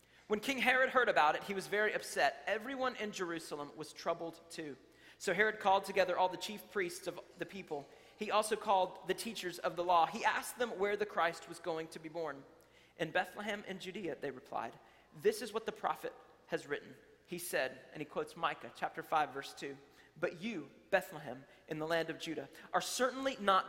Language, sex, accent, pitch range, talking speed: English, male, American, 155-210 Hz, 205 wpm